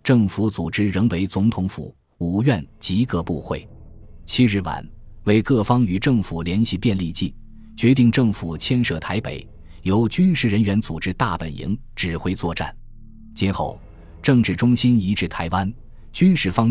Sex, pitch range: male, 90-115 Hz